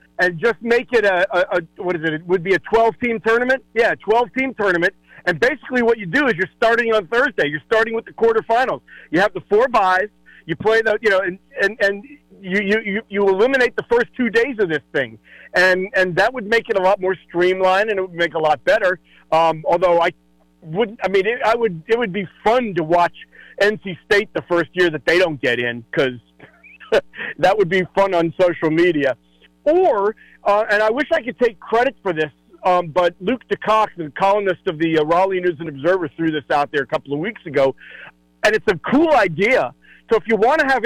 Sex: male